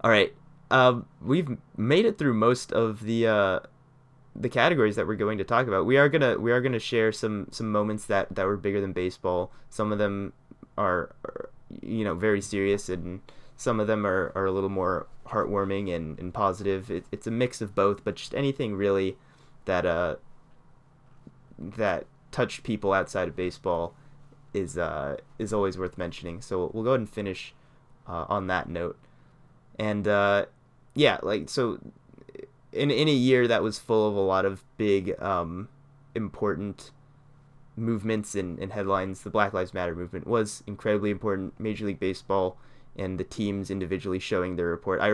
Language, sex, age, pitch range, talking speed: English, male, 20-39, 95-120 Hz, 175 wpm